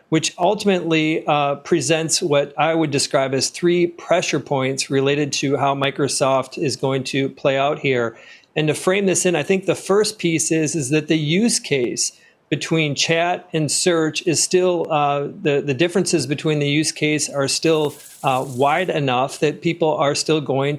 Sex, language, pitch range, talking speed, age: male, English, 140-160 Hz, 180 wpm, 40-59